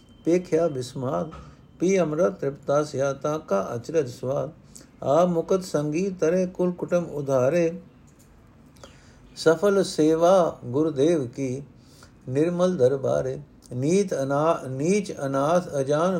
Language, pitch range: Punjabi, 130-165 Hz